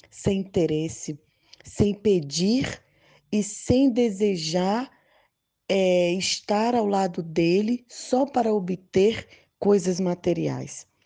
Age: 20-39